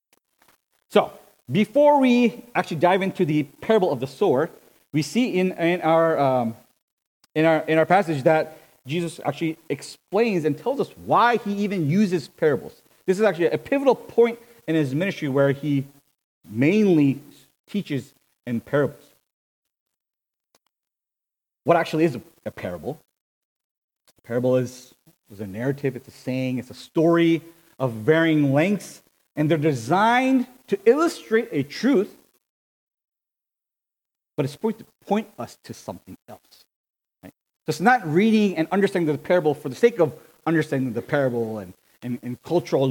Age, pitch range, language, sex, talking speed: 40-59, 135-190 Hz, English, male, 145 wpm